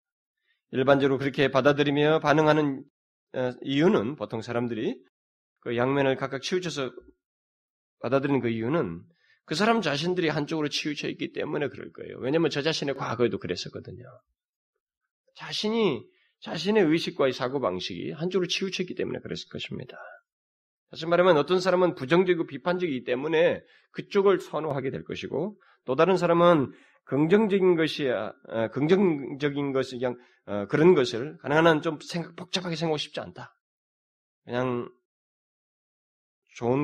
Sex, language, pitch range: male, Korean, 120-180 Hz